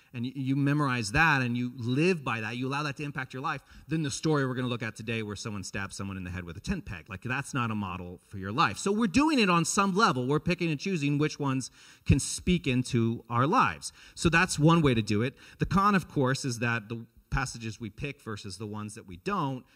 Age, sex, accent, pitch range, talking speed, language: 40-59, male, American, 115-155 Hz, 255 wpm, English